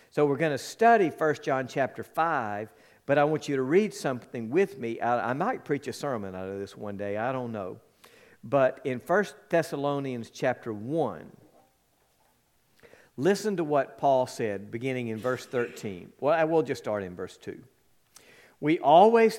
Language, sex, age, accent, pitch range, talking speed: English, male, 50-69, American, 115-160 Hz, 175 wpm